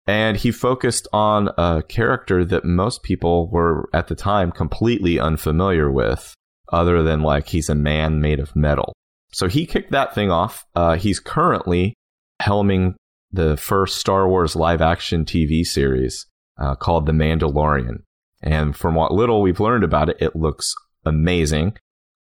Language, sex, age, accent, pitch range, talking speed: English, male, 30-49, American, 80-100 Hz, 155 wpm